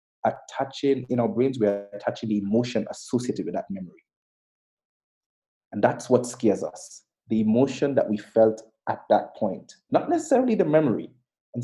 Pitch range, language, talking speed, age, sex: 110-135 Hz, English, 155 wpm, 30-49, male